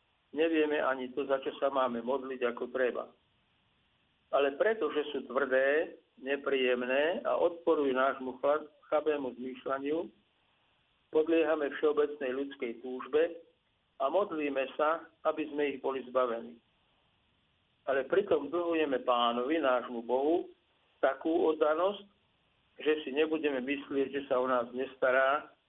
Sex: male